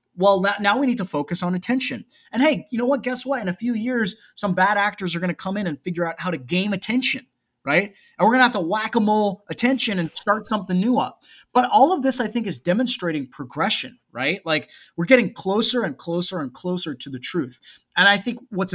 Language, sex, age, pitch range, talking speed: English, male, 20-39, 145-205 Hz, 240 wpm